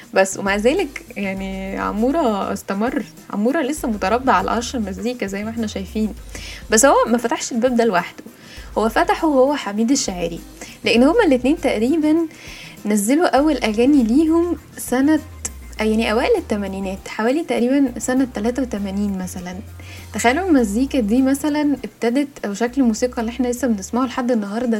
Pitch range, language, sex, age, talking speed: 210-270 Hz, Arabic, female, 10-29, 145 wpm